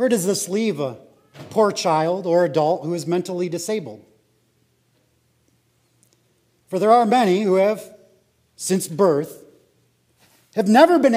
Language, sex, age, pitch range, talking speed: English, male, 40-59, 175-280 Hz, 130 wpm